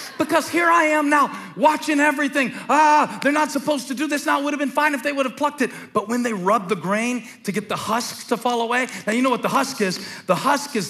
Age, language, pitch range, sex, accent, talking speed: 40-59, English, 200-290 Hz, male, American, 270 wpm